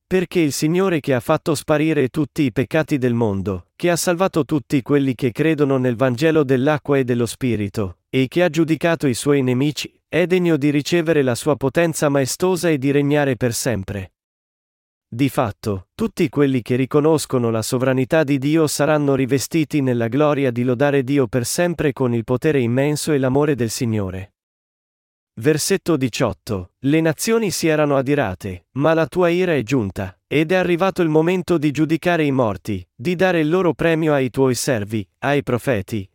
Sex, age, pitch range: male, 40-59, 120-160 Hz